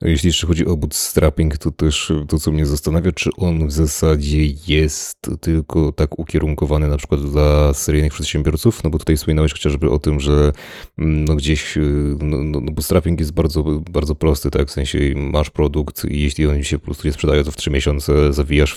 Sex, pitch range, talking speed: male, 75-85 Hz, 190 wpm